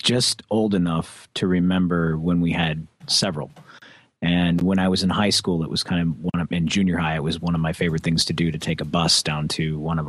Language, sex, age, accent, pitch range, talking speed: English, male, 30-49, American, 80-95 Hz, 245 wpm